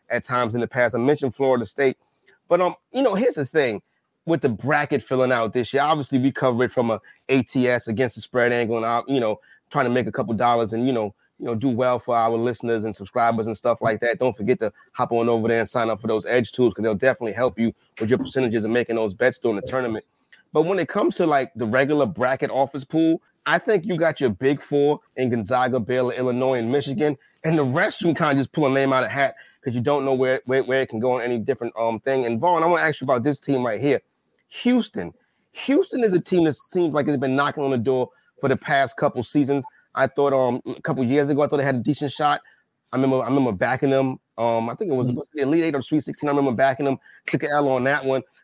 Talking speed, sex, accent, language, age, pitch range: 265 wpm, male, American, English, 30-49, 120-145 Hz